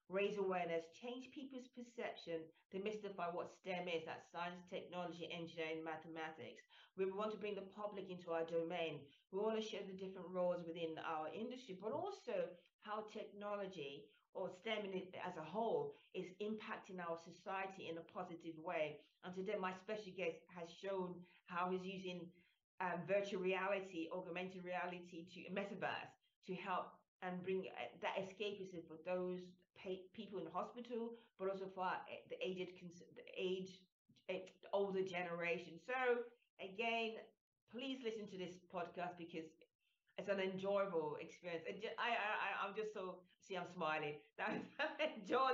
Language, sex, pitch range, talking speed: English, female, 175-210 Hz, 145 wpm